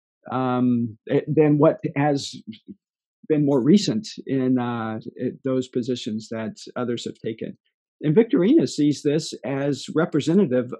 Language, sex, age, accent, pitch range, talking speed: English, male, 50-69, American, 125-150 Hz, 120 wpm